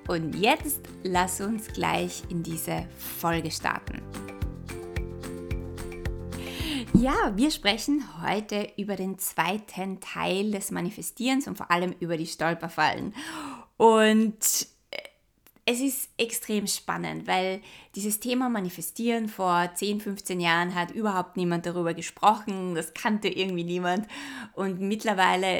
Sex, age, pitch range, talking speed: female, 20-39, 175-225 Hz, 115 wpm